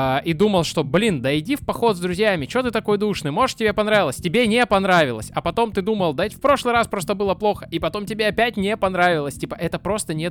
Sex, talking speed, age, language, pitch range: male, 240 wpm, 20-39, Russian, 125-175 Hz